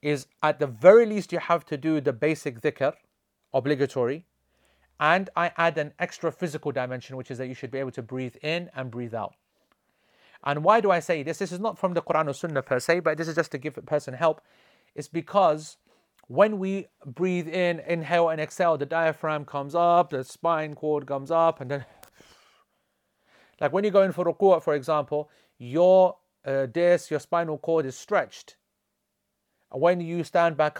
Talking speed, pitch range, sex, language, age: 195 wpm, 145-190 Hz, male, English, 40-59